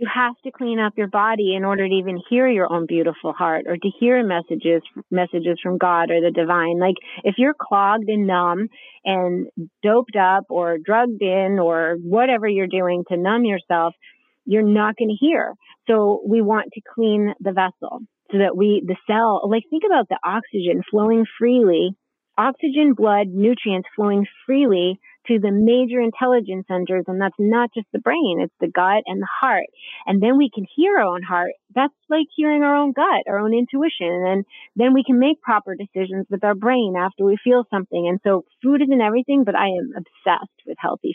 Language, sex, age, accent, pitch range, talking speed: English, female, 30-49, American, 185-245 Hz, 195 wpm